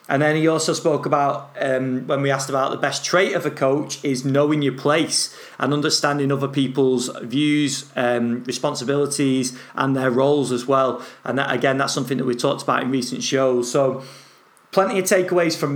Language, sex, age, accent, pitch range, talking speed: English, male, 30-49, British, 135-155 Hz, 195 wpm